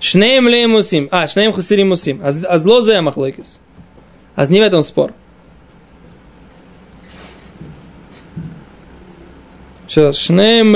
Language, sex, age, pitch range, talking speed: Russian, male, 20-39, 170-220 Hz, 100 wpm